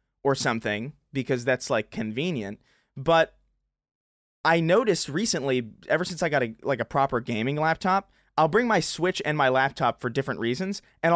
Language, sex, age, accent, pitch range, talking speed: English, male, 20-39, American, 130-170 Hz, 160 wpm